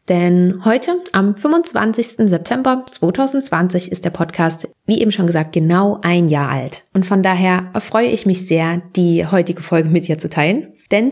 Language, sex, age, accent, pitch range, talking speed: German, female, 20-39, German, 165-200 Hz, 175 wpm